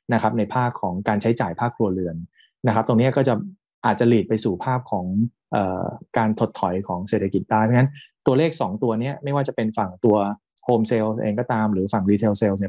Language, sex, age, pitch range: Thai, male, 20-39, 105-130 Hz